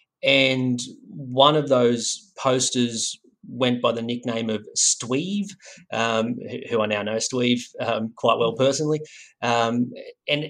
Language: English